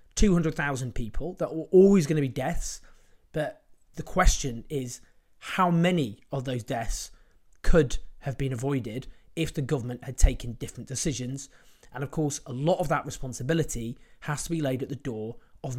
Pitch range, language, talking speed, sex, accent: 125-160 Hz, English, 170 wpm, male, British